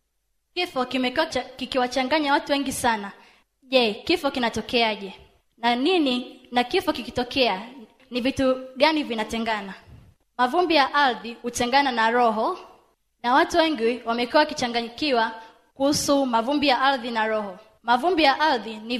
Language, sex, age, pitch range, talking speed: Swahili, female, 20-39, 230-280 Hz, 125 wpm